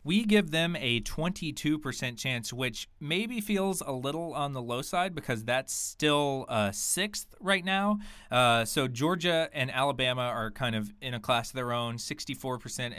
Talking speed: 170 wpm